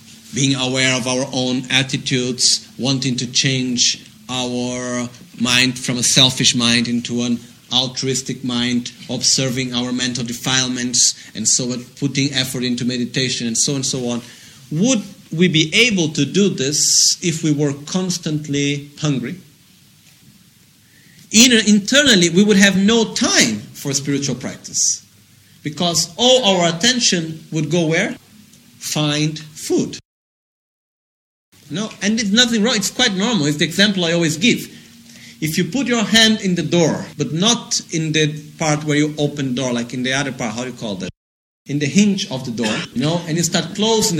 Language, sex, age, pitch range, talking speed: Italian, male, 40-59, 130-200 Hz, 165 wpm